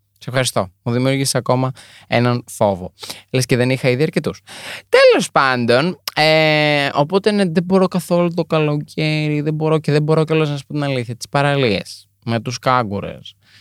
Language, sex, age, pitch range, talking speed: Greek, male, 20-39, 120-150 Hz, 155 wpm